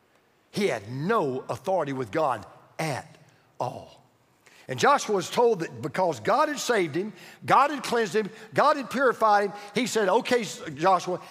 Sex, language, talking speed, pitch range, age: male, English, 160 wpm, 155-230 Hz, 50-69